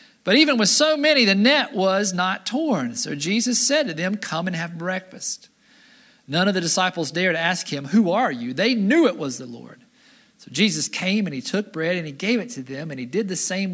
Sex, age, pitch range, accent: male, 40-59, 140-210 Hz, American